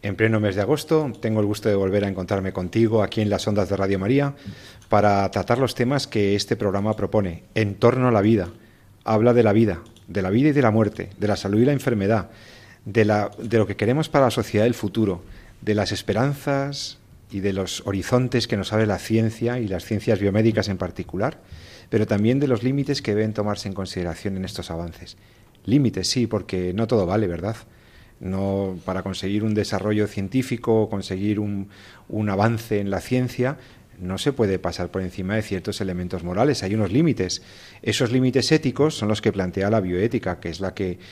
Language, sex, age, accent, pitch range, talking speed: Spanish, male, 40-59, Spanish, 100-120 Hz, 200 wpm